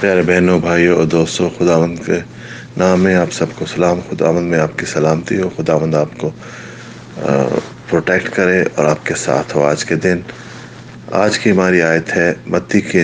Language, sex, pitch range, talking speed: English, male, 80-90 Hz, 160 wpm